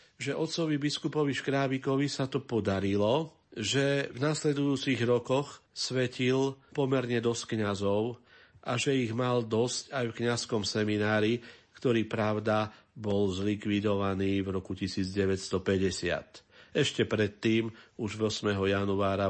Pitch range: 100-115 Hz